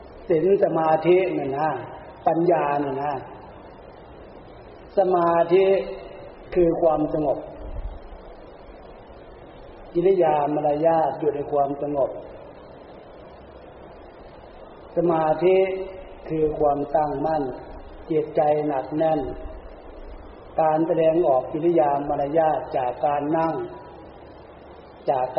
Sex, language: male, Thai